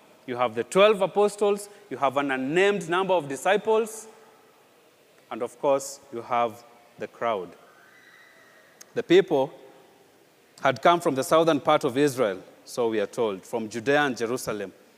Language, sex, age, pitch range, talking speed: English, male, 30-49, 140-205 Hz, 150 wpm